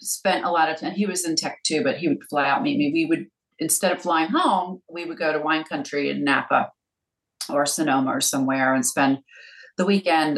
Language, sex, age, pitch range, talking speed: English, female, 40-59, 145-190 Hz, 225 wpm